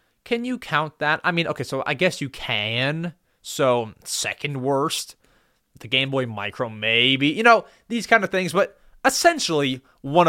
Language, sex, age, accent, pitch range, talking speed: English, male, 20-39, American, 130-190 Hz, 170 wpm